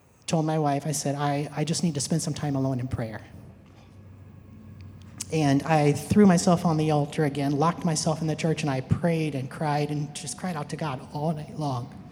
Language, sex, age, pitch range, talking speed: English, male, 30-49, 140-175 Hz, 215 wpm